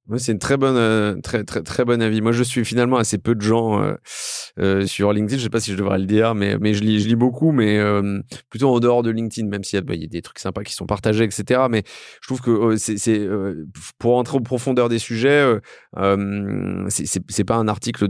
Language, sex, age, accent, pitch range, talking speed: French, male, 30-49, French, 110-140 Hz, 255 wpm